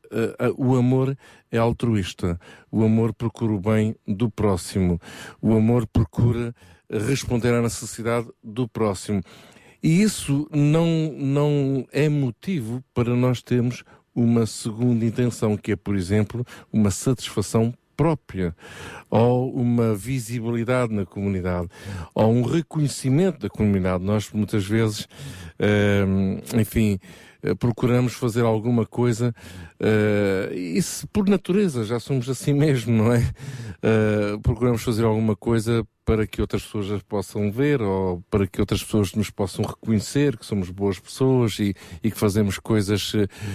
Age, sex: 50-69, male